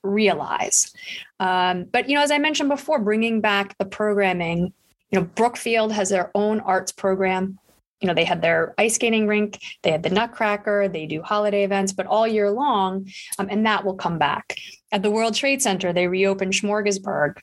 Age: 30-49